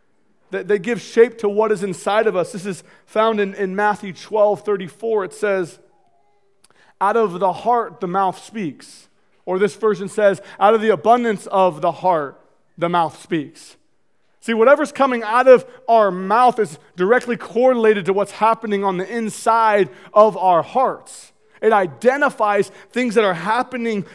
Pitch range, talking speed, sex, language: 200-245 Hz, 160 wpm, male, English